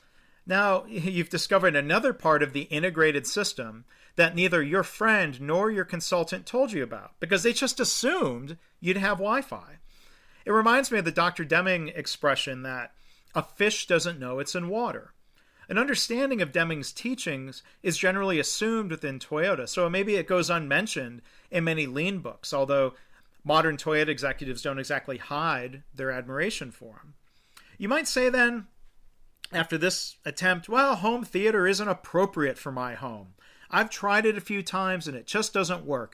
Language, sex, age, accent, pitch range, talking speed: English, male, 40-59, American, 145-200 Hz, 165 wpm